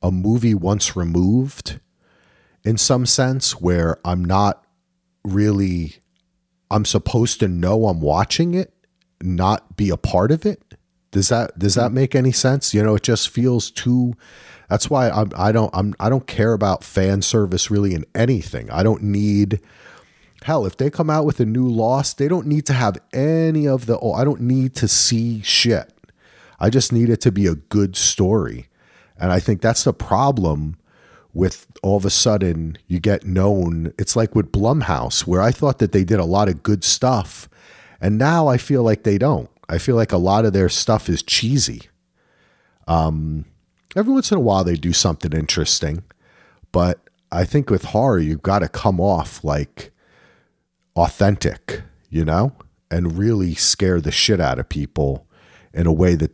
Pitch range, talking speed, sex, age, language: 90-120 Hz, 180 wpm, male, 40-59, English